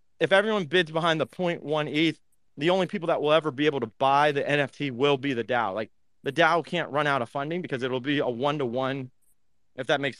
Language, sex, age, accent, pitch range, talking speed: English, male, 30-49, American, 130-160 Hz, 230 wpm